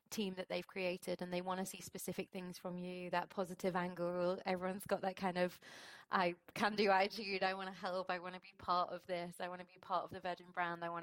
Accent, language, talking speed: British, English, 255 wpm